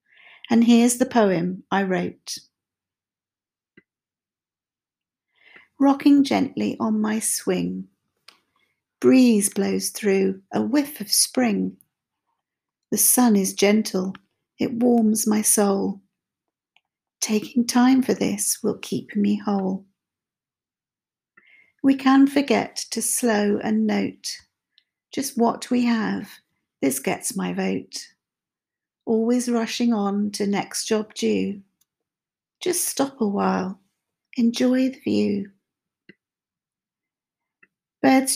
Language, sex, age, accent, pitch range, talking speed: English, female, 50-69, British, 205-245 Hz, 100 wpm